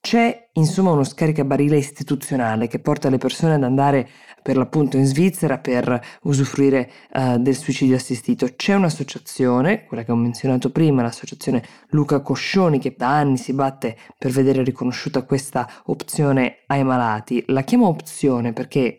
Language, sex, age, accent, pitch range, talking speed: Italian, female, 20-39, native, 125-145 Hz, 150 wpm